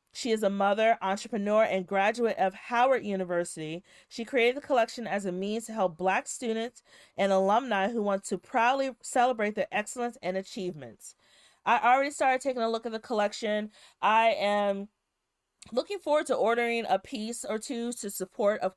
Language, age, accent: English, 30-49, American